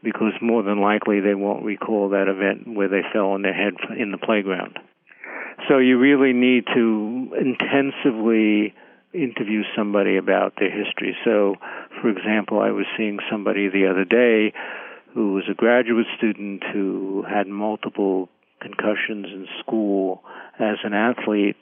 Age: 50-69